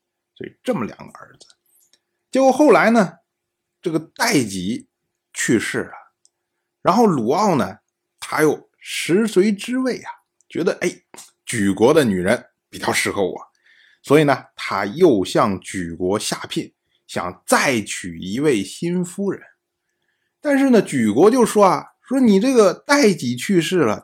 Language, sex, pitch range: Chinese, male, 155-260 Hz